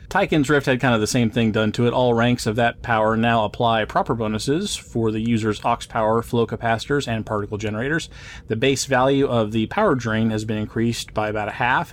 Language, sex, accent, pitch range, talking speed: English, male, American, 110-130 Hz, 220 wpm